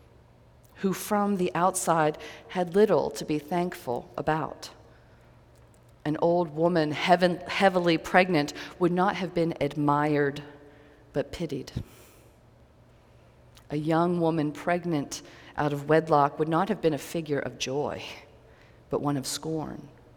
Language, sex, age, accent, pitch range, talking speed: English, female, 40-59, American, 150-180 Hz, 120 wpm